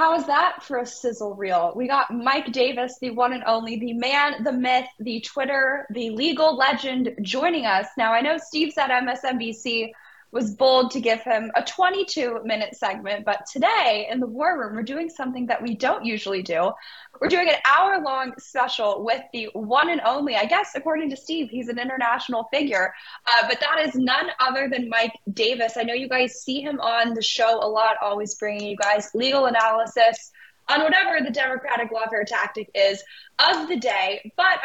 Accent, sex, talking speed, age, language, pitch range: American, female, 190 wpm, 10-29, English, 210-280 Hz